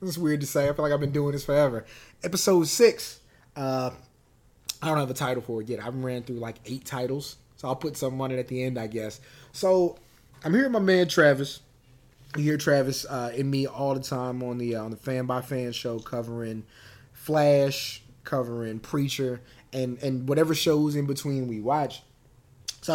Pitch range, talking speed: 125-145 Hz, 205 wpm